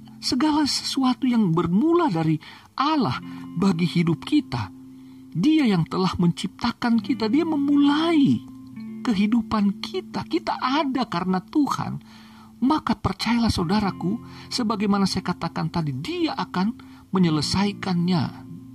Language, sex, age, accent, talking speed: Indonesian, male, 50-69, native, 100 wpm